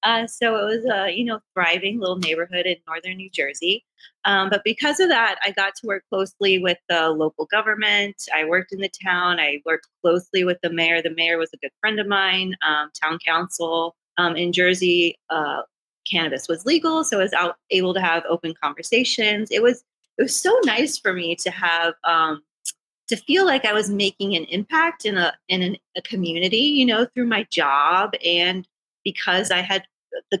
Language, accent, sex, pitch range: English, American, female, 175-255 Hz